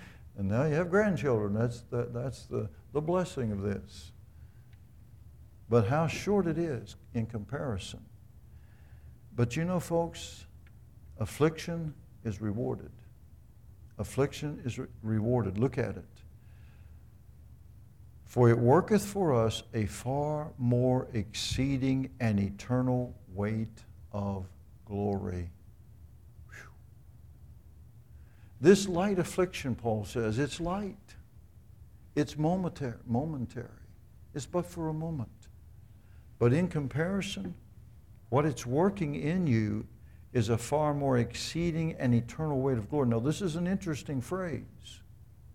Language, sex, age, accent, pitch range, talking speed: English, male, 60-79, American, 105-150 Hz, 110 wpm